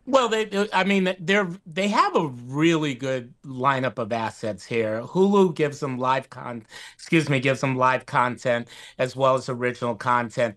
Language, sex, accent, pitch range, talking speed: English, male, American, 130-170 Hz, 155 wpm